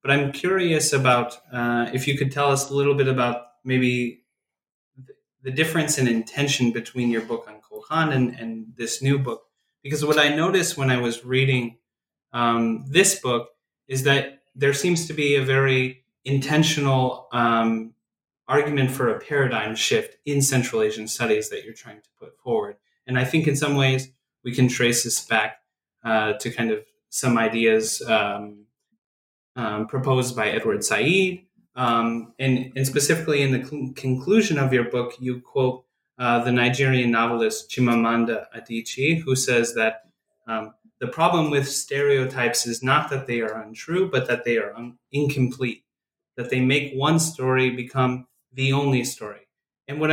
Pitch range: 120-145 Hz